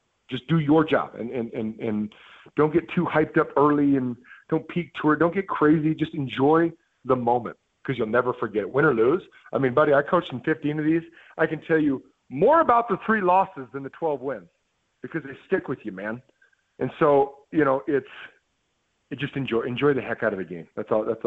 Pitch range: 120-165 Hz